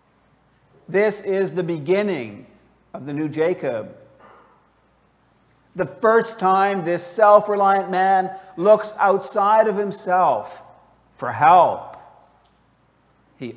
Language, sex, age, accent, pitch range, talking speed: English, male, 50-69, American, 175-215 Hz, 95 wpm